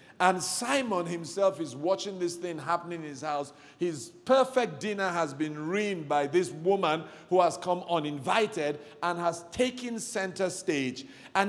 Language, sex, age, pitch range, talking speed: English, male, 50-69, 165-220 Hz, 155 wpm